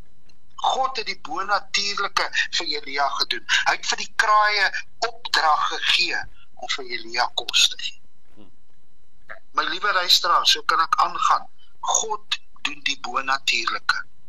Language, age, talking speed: English, 50-69, 140 wpm